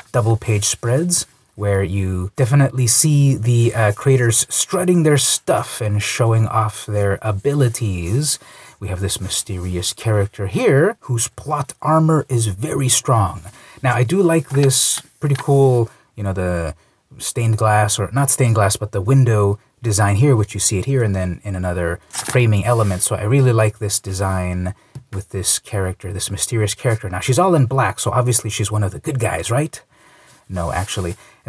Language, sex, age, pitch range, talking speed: English, male, 30-49, 100-135 Hz, 175 wpm